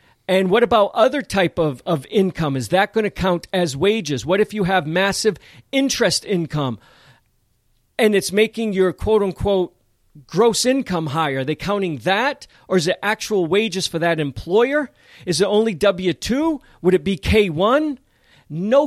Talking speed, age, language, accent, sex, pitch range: 160 wpm, 40-59, English, American, male, 160-220 Hz